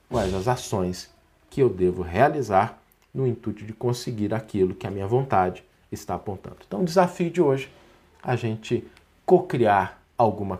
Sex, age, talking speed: male, 50-69, 160 wpm